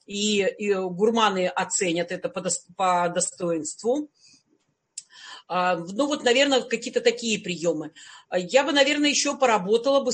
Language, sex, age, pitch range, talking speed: Russian, female, 40-59, 195-255 Hz, 105 wpm